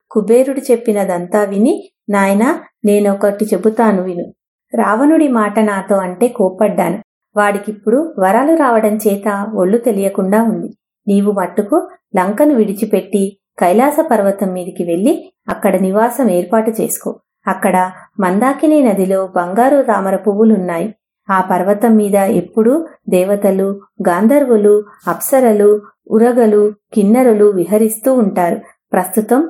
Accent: Indian